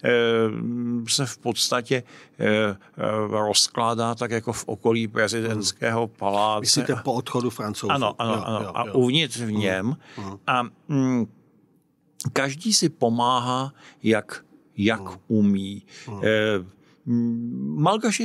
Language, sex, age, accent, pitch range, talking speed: Czech, male, 50-69, native, 105-130 Hz, 85 wpm